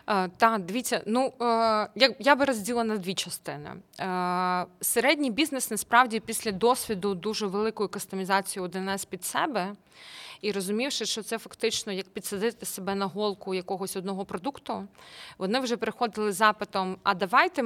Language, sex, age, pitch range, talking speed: Ukrainian, female, 20-39, 195-240 Hz, 145 wpm